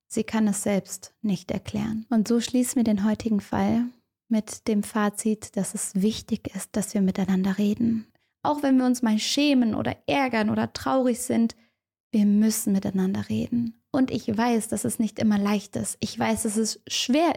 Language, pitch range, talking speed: German, 205-250 Hz, 185 wpm